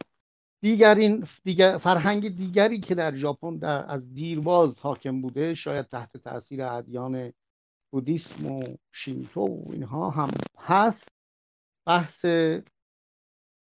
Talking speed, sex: 95 wpm, male